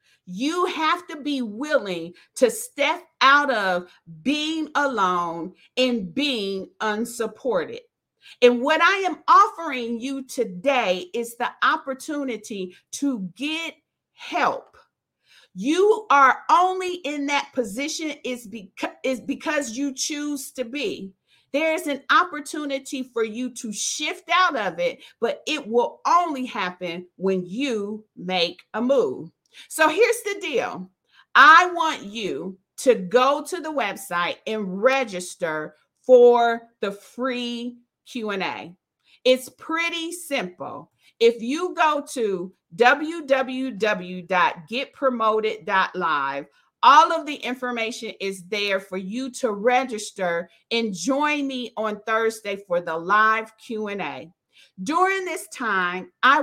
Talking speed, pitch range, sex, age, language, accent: 115 wpm, 205-295 Hz, female, 50-69, English, American